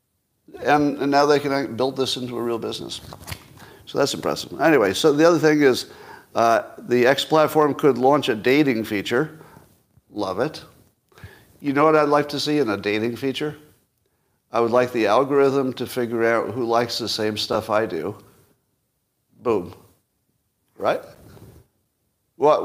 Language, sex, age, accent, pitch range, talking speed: English, male, 50-69, American, 110-140 Hz, 160 wpm